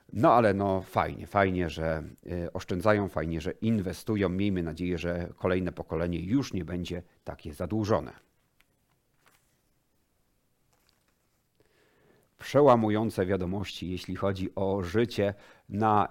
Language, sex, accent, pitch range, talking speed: Polish, male, native, 90-115 Hz, 100 wpm